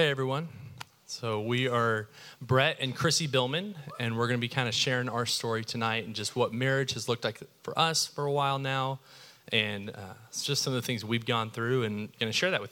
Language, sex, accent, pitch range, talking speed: English, male, American, 115-140 Hz, 235 wpm